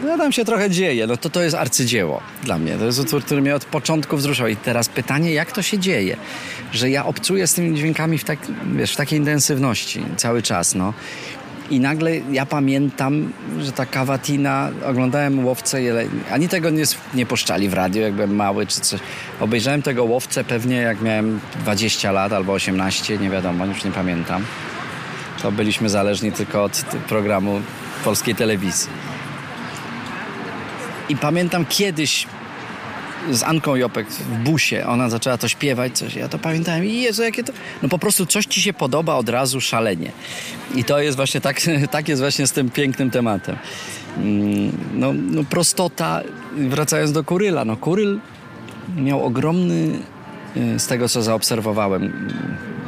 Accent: native